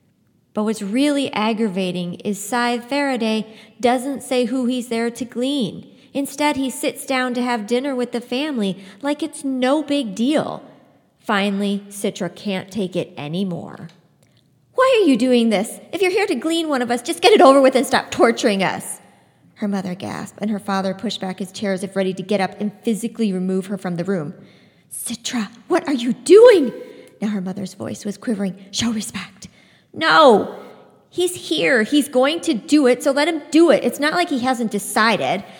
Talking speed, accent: 190 wpm, American